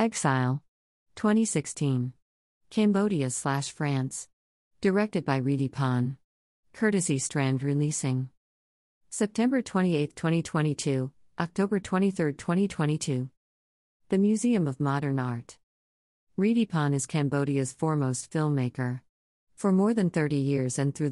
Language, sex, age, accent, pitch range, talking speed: English, female, 50-69, American, 130-170 Hz, 95 wpm